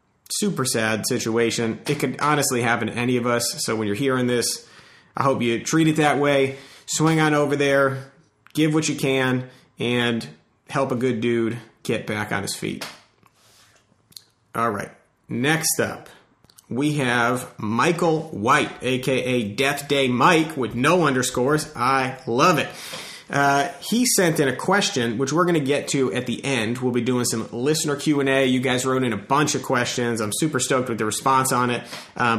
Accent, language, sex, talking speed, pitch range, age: American, English, male, 185 wpm, 120-145 Hz, 30-49